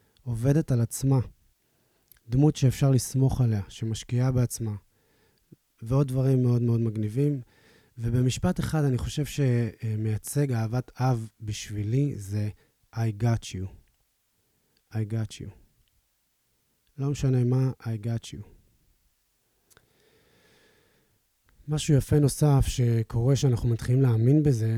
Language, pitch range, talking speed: Hebrew, 110-130 Hz, 105 wpm